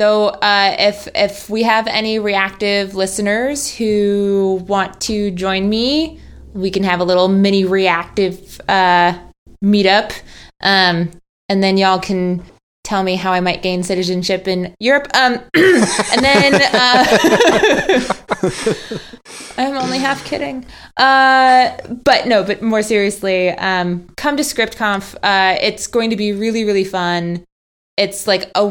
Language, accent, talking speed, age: English, American, 135 wpm, 20-39